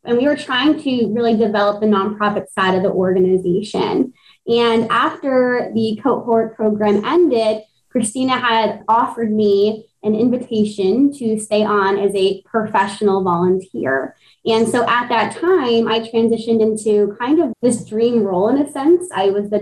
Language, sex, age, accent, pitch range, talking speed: English, female, 20-39, American, 205-235 Hz, 155 wpm